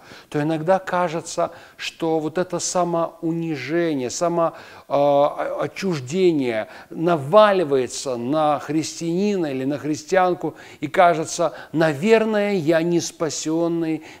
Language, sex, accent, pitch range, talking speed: Russian, male, native, 140-180 Hz, 85 wpm